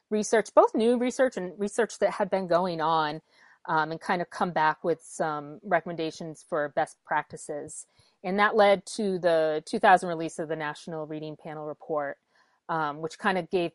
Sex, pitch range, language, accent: female, 160-220 Hz, English, American